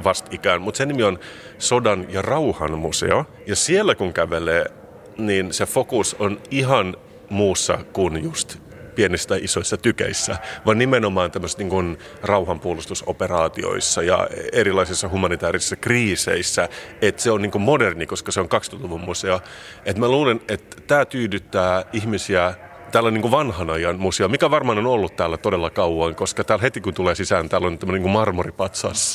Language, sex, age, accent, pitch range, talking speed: Finnish, male, 30-49, native, 90-110 Hz, 150 wpm